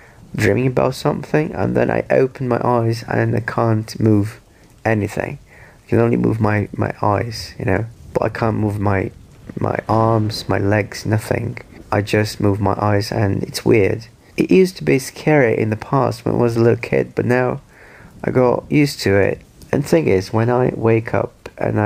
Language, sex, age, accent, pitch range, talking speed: English, male, 30-49, British, 100-120 Hz, 195 wpm